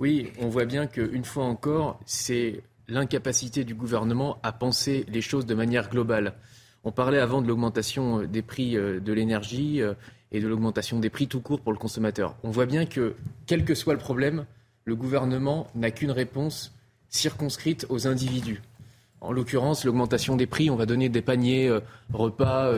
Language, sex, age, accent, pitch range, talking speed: French, male, 20-39, French, 115-135 Hz, 170 wpm